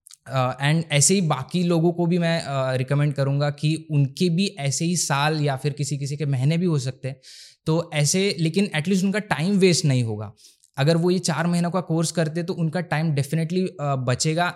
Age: 20-39